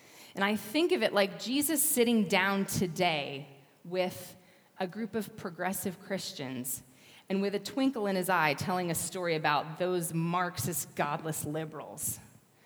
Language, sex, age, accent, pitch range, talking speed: English, female, 30-49, American, 165-215 Hz, 145 wpm